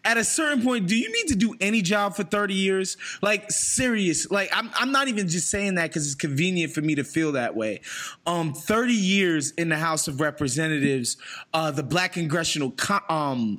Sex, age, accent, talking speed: male, 20-39, American, 205 wpm